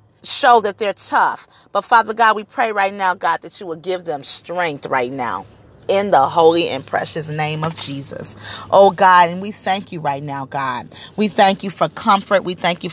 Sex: female